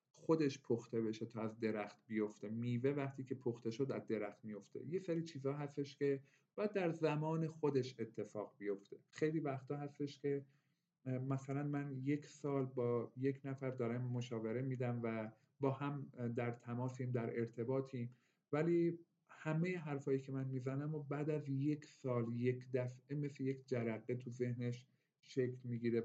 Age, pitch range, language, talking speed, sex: 50-69, 115-140 Hz, Persian, 155 wpm, male